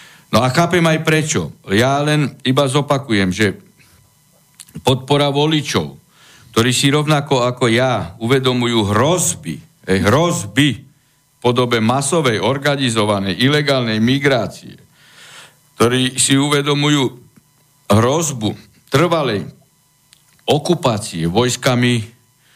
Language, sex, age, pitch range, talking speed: Slovak, male, 60-79, 115-160 Hz, 90 wpm